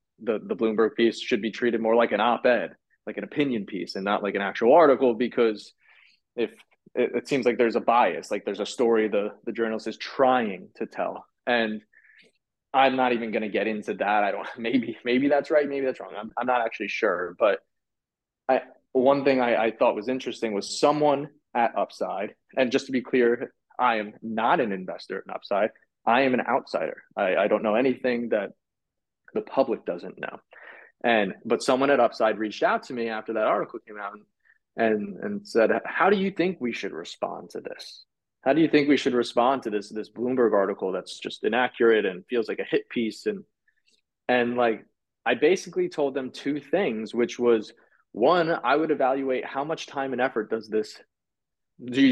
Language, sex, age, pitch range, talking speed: English, male, 20-39, 110-135 Hz, 200 wpm